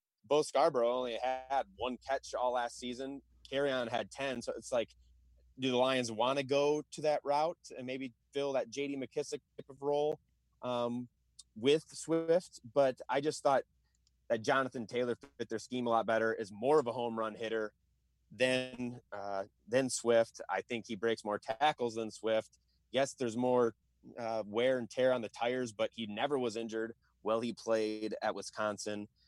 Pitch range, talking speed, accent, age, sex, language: 105-135 Hz, 185 wpm, American, 30-49, male, English